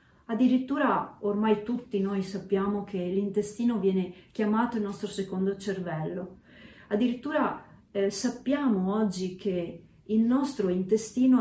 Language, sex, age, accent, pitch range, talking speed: Italian, female, 40-59, native, 195-245 Hz, 110 wpm